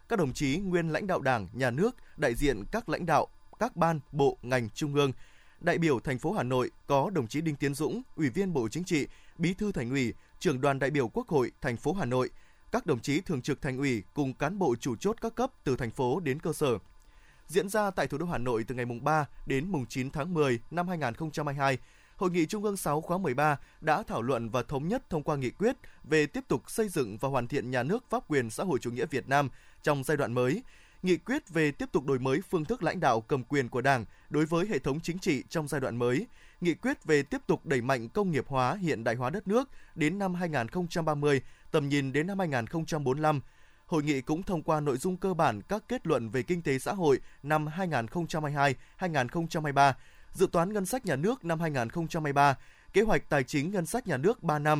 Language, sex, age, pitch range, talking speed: Vietnamese, male, 20-39, 135-180 Hz, 235 wpm